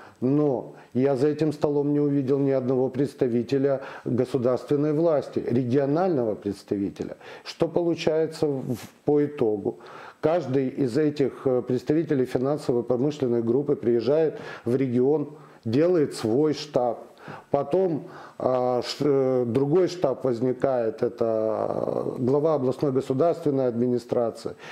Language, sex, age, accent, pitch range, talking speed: Ukrainian, male, 40-59, native, 130-150 Hz, 95 wpm